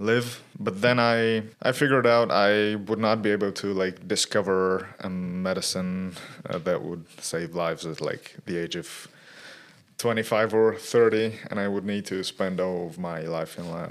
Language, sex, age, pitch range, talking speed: English, male, 20-39, 95-110 Hz, 175 wpm